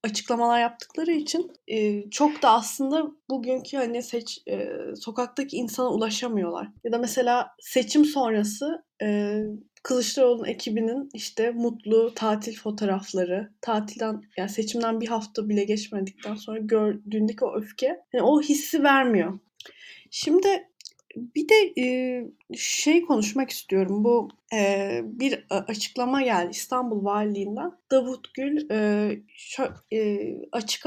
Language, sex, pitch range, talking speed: Turkish, female, 215-275 Hz, 115 wpm